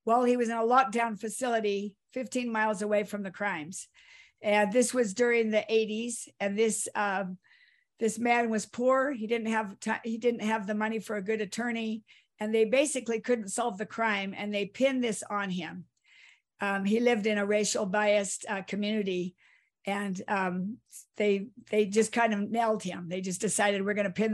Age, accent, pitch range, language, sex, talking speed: 50-69, American, 205-240 Hz, English, female, 190 wpm